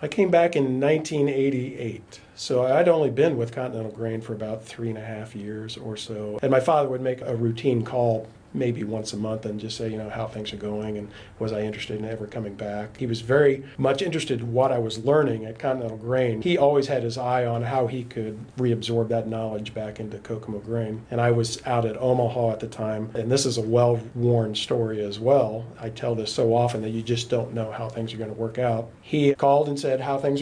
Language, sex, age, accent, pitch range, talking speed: English, male, 40-59, American, 110-130 Hz, 235 wpm